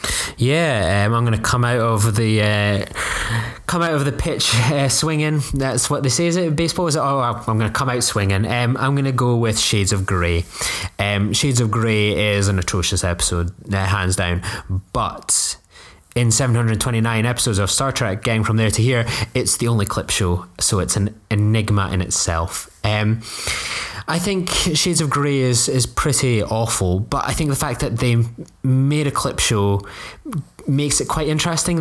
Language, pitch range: English, 100-135 Hz